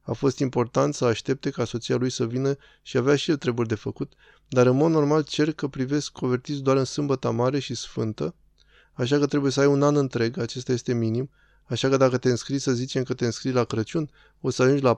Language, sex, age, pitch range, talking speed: Romanian, male, 20-39, 120-140 Hz, 230 wpm